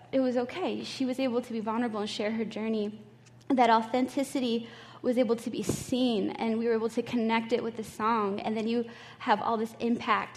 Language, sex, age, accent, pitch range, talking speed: English, female, 10-29, American, 205-250 Hz, 215 wpm